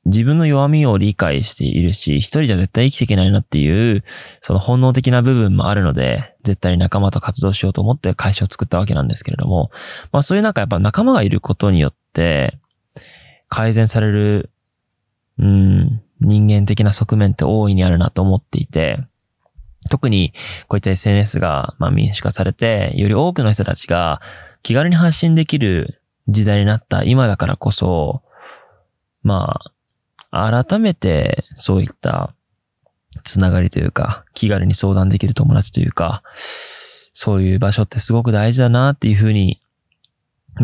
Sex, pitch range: male, 100-130 Hz